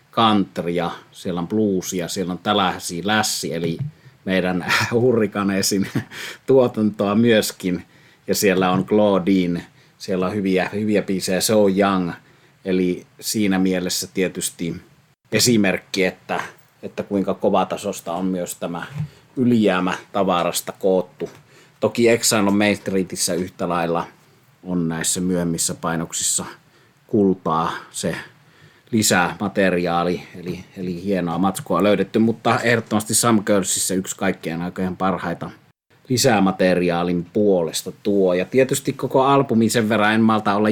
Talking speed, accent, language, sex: 115 wpm, native, Finnish, male